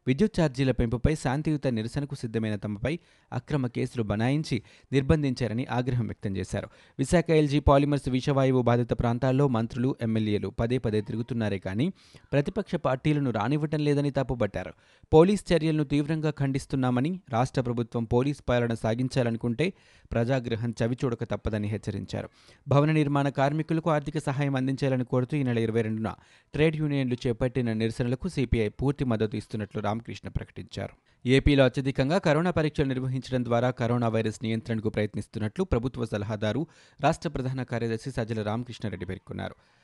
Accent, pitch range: native, 110-140 Hz